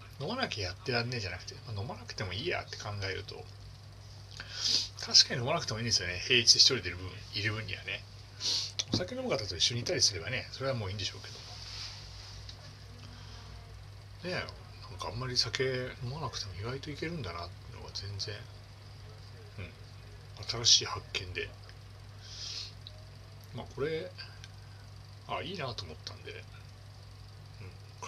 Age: 40-59